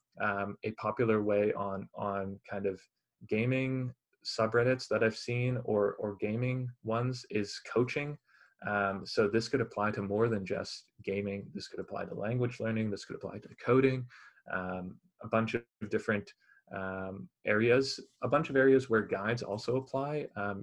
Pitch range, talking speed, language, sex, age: 100-120 Hz, 165 wpm, English, male, 20-39